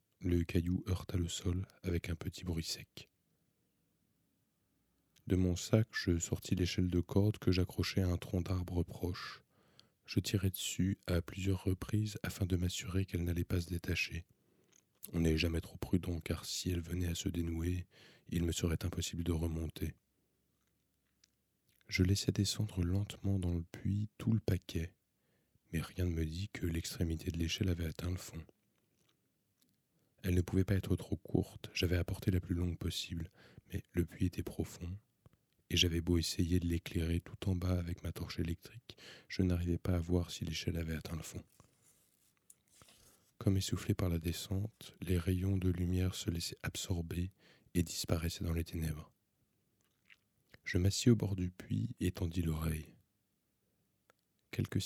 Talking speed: 165 wpm